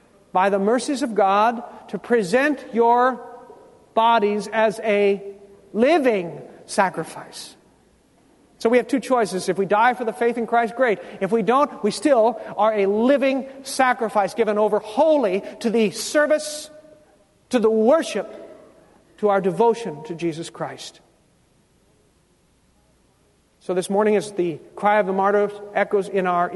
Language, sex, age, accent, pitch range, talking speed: English, male, 50-69, American, 185-230 Hz, 140 wpm